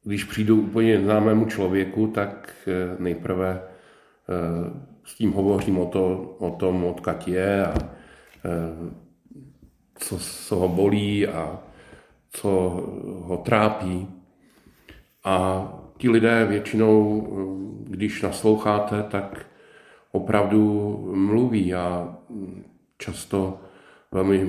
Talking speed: 90 wpm